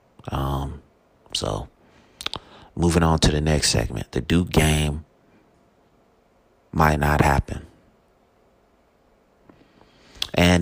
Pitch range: 75-85 Hz